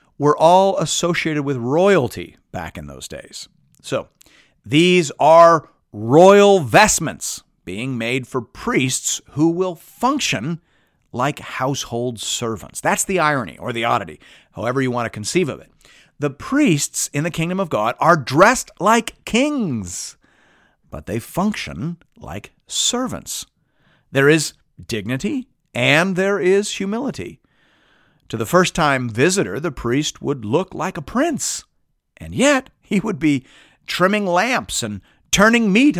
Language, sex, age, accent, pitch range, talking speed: English, male, 50-69, American, 125-195 Hz, 135 wpm